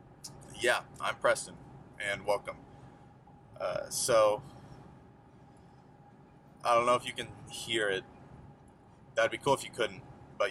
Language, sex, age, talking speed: English, male, 20-39, 125 wpm